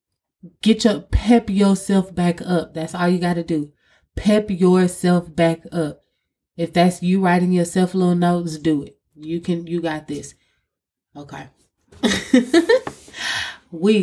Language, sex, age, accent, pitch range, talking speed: English, female, 20-39, American, 160-200 Hz, 135 wpm